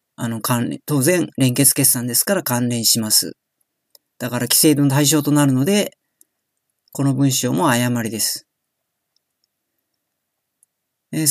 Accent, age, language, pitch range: native, 40-59, Japanese, 130-165 Hz